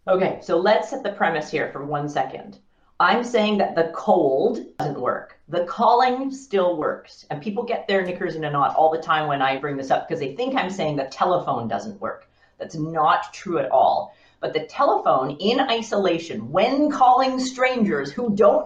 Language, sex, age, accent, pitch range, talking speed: English, female, 40-59, American, 145-220 Hz, 195 wpm